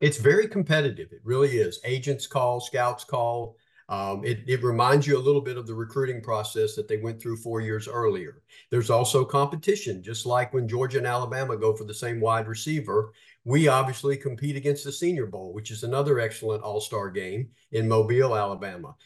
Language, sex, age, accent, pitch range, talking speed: English, male, 50-69, American, 110-135 Hz, 190 wpm